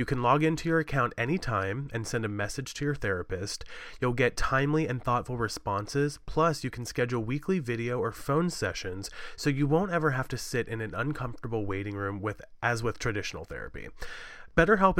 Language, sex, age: English, male, 30-49